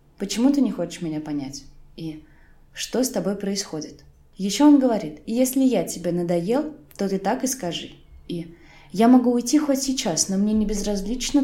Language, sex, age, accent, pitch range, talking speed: Russian, female, 20-39, native, 160-235 Hz, 175 wpm